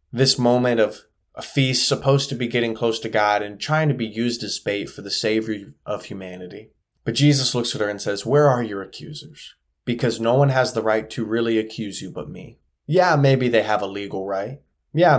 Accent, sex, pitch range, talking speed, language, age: American, male, 105-130 Hz, 215 wpm, English, 20-39